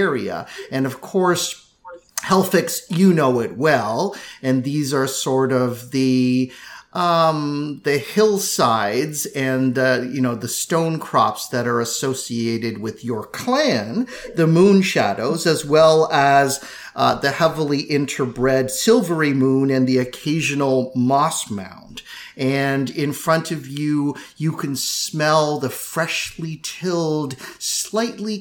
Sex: male